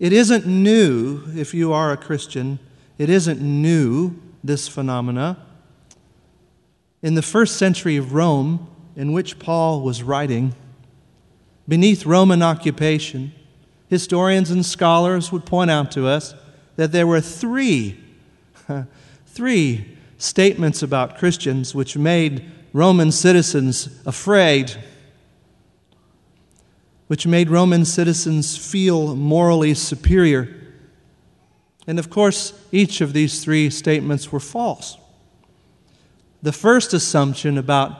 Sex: male